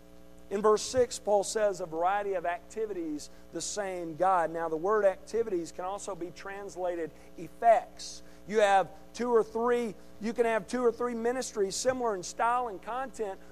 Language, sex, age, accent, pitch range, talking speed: English, male, 50-69, American, 165-265 Hz, 170 wpm